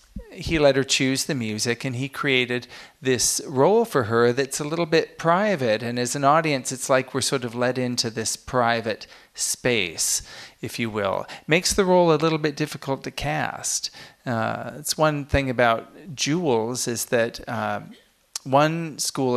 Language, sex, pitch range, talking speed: English, male, 120-140 Hz, 170 wpm